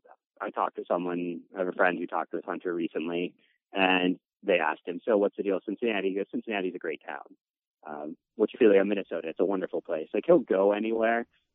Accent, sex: American, male